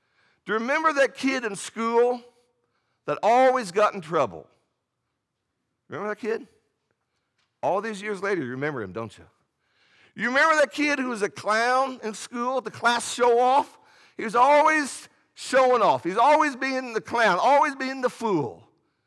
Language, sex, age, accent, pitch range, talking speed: English, male, 50-69, American, 165-255 Hz, 165 wpm